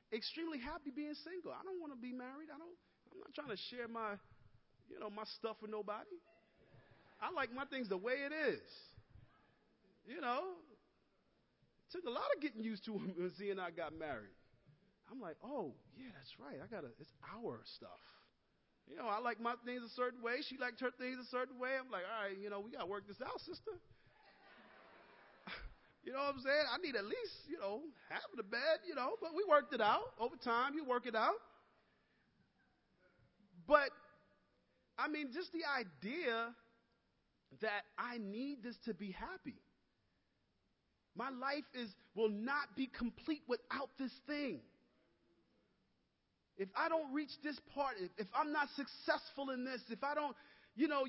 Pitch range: 215-295 Hz